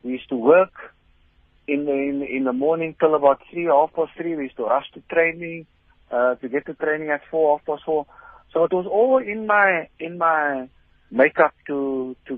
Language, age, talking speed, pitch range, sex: English, 50-69, 205 wpm, 125-155 Hz, male